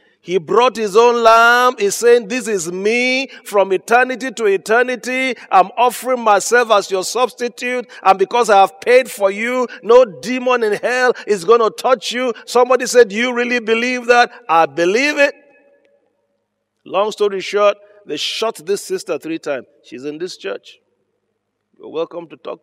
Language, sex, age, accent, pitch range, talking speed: English, male, 40-59, Nigerian, 175-245 Hz, 165 wpm